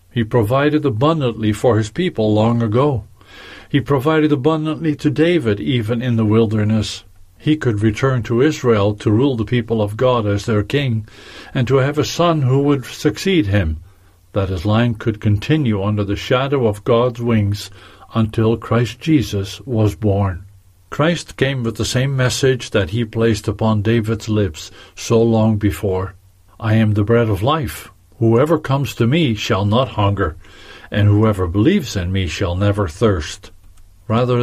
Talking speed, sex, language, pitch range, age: 160 wpm, male, English, 100-125 Hz, 50-69